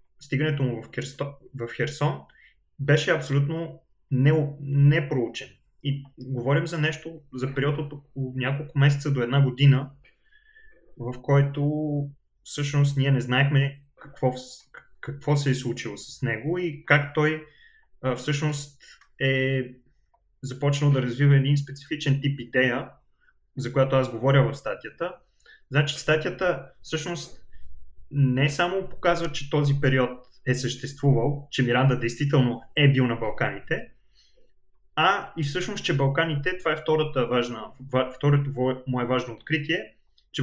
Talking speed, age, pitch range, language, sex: 130 wpm, 20-39, 130-150 Hz, Bulgarian, male